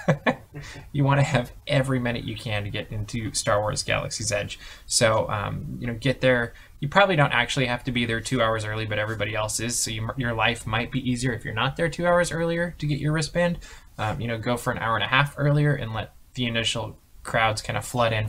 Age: 10-29